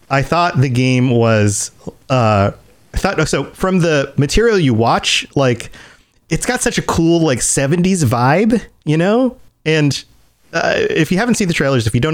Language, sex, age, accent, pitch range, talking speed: English, male, 30-49, American, 125-185 Hz, 180 wpm